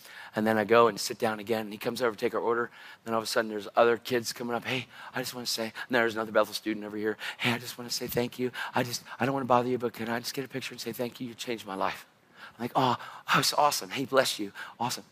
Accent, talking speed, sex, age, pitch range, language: American, 320 wpm, male, 40-59, 115-160 Hz, English